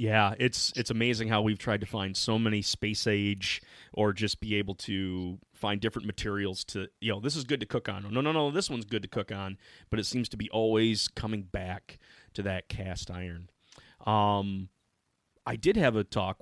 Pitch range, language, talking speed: 100-120 Hz, English, 210 wpm